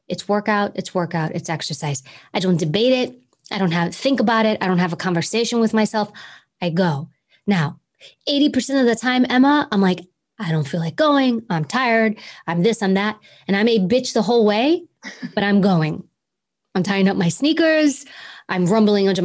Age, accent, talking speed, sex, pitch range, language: 20-39, American, 195 wpm, female, 180-220 Hz, English